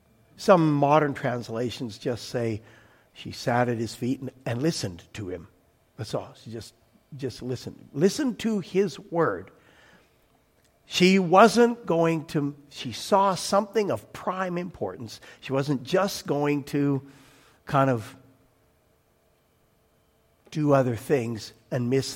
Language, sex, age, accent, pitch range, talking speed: English, male, 60-79, American, 125-210 Hz, 125 wpm